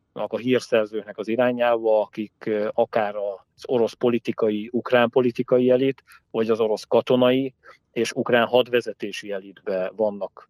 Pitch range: 105-125 Hz